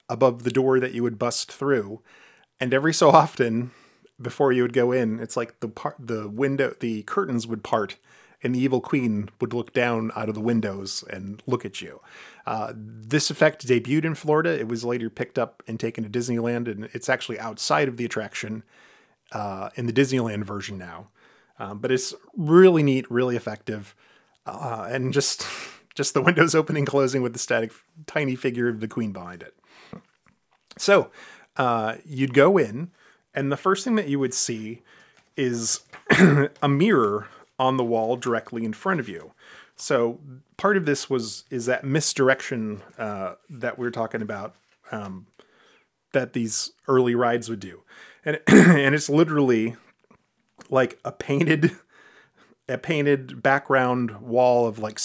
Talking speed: 170 wpm